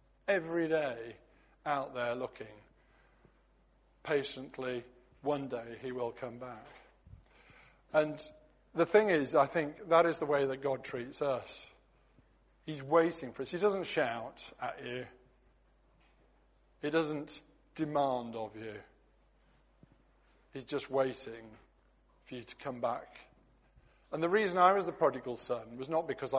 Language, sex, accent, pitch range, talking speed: English, male, British, 120-145 Hz, 135 wpm